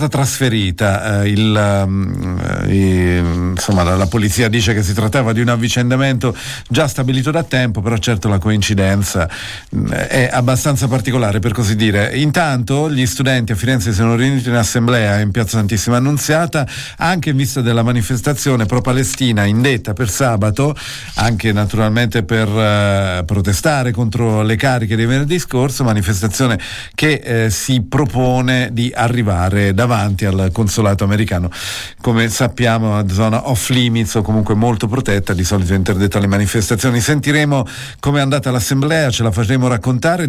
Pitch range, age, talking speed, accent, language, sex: 105-130 Hz, 50-69, 150 wpm, native, Italian, male